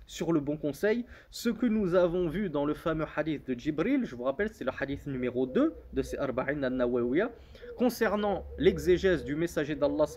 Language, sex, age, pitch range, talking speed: French, male, 20-39, 135-205 Hz, 190 wpm